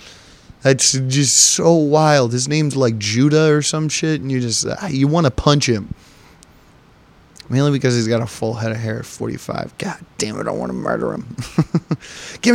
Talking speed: 195 wpm